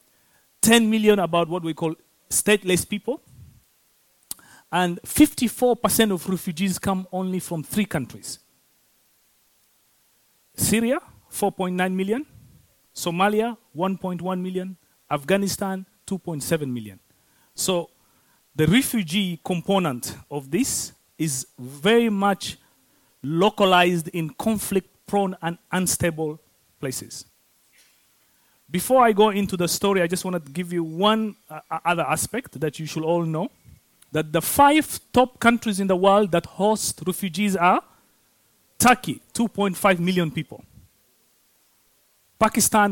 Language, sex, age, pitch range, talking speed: Swedish, male, 40-59, 160-210 Hz, 110 wpm